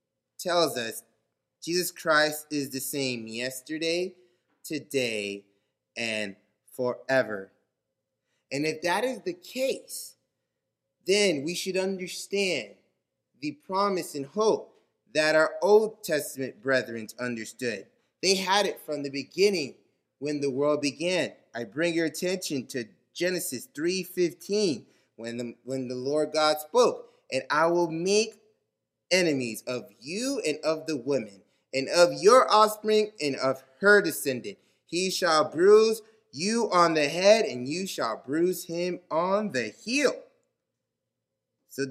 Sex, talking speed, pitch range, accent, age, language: male, 130 wpm, 135-200 Hz, American, 20-39, English